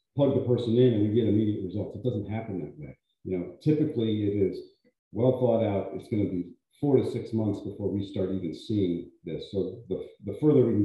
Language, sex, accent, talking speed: English, male, American, 230 wpm